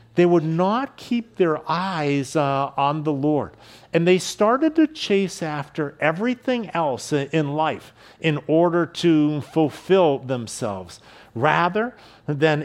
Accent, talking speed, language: American, 130 wpm, English